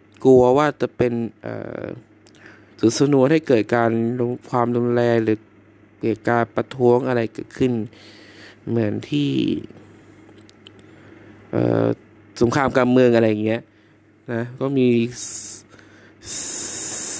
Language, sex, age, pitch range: Thai, male, 20-39, 105-130 Hz